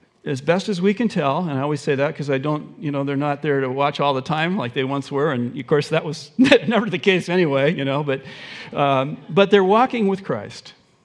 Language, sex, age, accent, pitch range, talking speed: English, male, 50-69, American, 150-205 Hz, 265 wpm